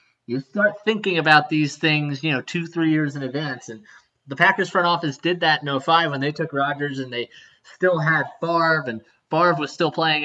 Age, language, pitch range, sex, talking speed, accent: 20-39, English, 135-170 Hz, male, 210 wpm, American